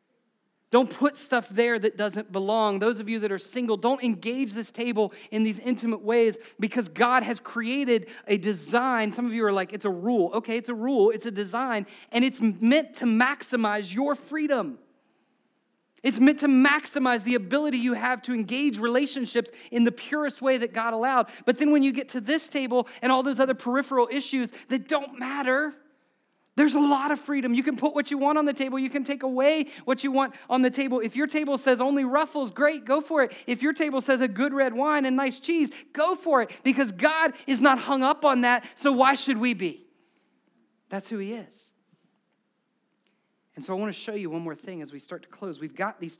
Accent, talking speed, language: American, 215 wpm, English